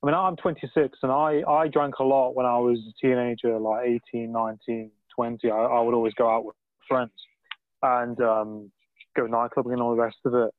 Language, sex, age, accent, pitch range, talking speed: English, male, 20-39, British, 120-145 Hz, 210 wpm